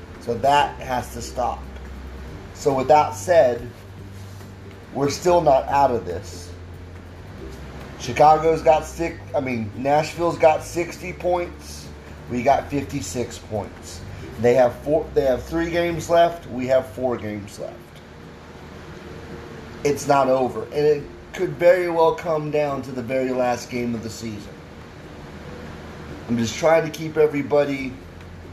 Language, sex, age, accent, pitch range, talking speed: English, male, 30-49, American, 90-145 Hz, 135 wpm